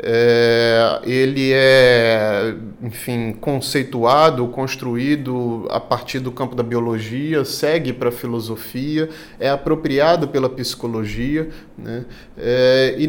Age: 30-49